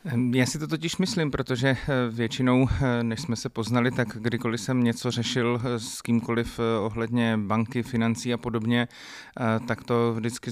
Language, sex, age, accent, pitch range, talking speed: Czech, male, 30-49, native, 110-120 Hz, 150 wpm